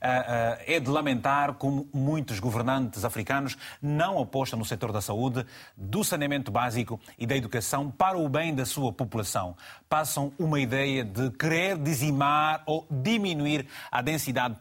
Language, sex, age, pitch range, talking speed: Portuguese, male, 30-49, 115-140 Hz, 145 wpm